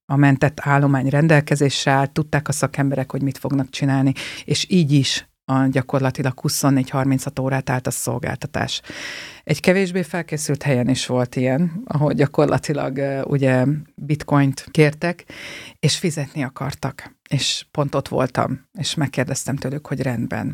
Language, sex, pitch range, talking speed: Hungarian, female, 130-150 Hz, 130 wpm